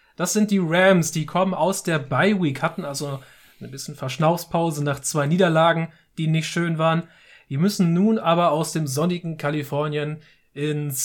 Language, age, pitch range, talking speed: German, 30-49, 145-185 Hz, 165 wpm